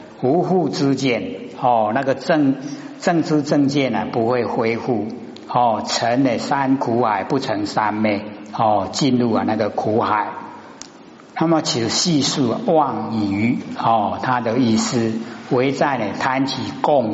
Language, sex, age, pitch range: Chinese, male, 60-79, 115-175 Hz